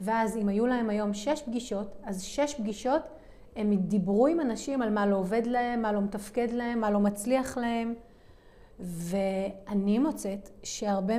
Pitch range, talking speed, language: 200-240 Hz, 160 wpm, Hebrew